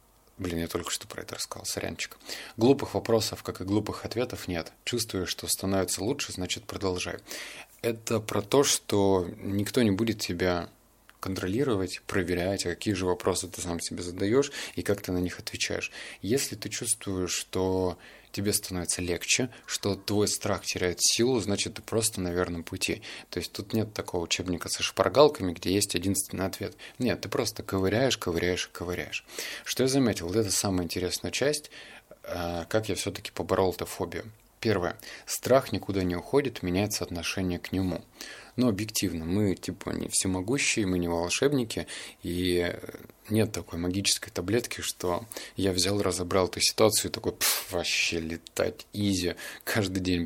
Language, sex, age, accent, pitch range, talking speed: Russian, male, 20-39, native, 90-110 Hz, 160 wpm